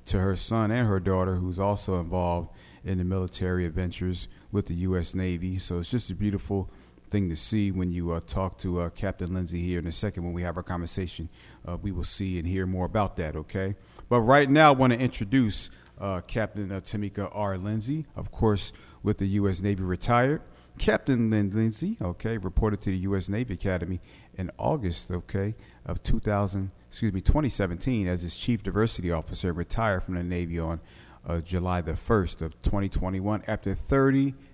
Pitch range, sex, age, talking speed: 90-105 Hz, male, 40-59, 190 wpm